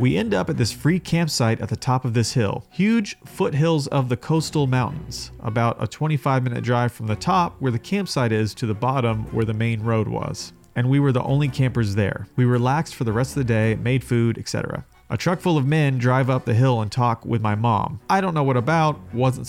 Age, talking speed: 30-49, 235 wpm